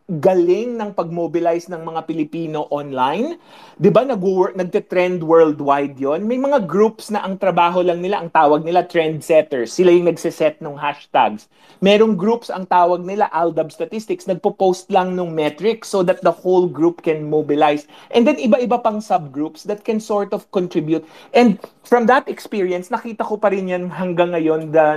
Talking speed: 165 wpm